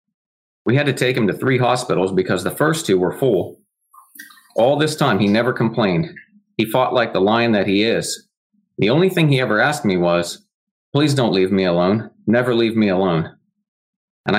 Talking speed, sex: 190 wpm, male